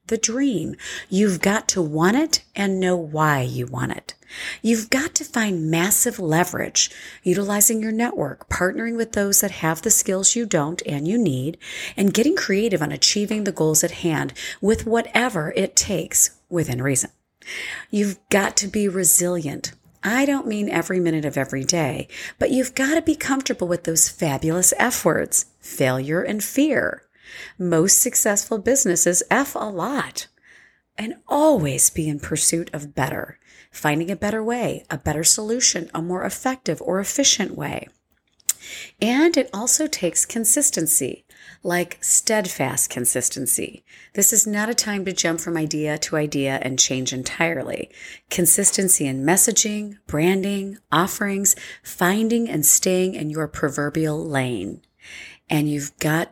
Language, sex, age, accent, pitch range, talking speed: English, female, 40-59, American, 155-215 Hz, 150 wpm